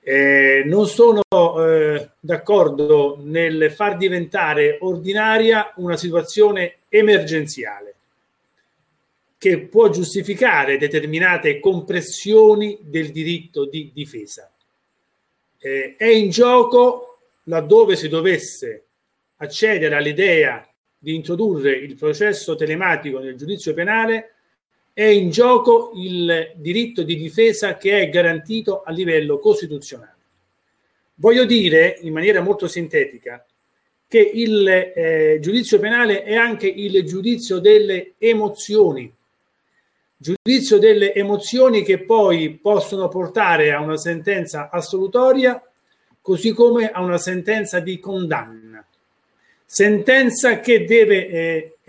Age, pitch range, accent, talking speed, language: 40-59, 165-225 Hz, native, 105 wpm, Italian